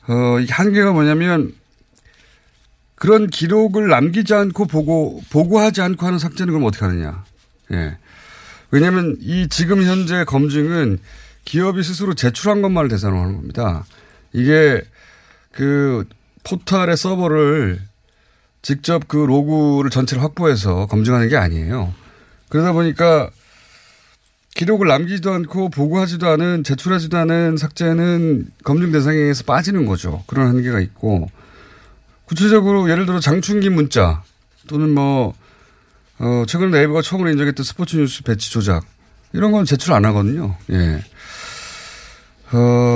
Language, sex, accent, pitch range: Korean, male, native, 110-170 Hz